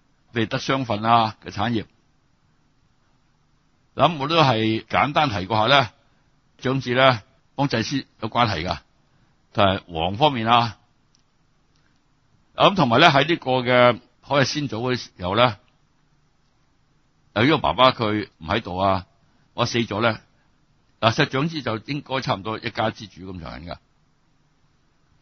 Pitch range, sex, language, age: 100-135 Hz, male, Chinese, 60-79